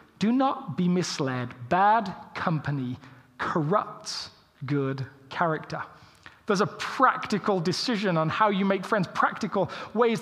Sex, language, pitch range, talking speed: male, English, 150-215 Hz, 115 wpm